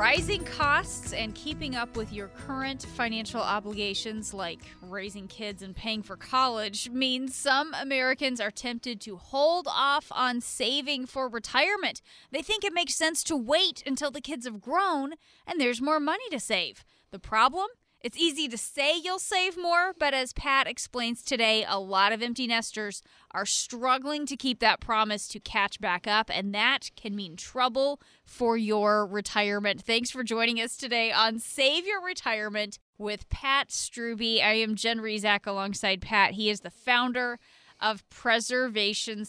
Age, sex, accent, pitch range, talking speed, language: 20-39, female, American, 210-280 Hz, 165 wpm, English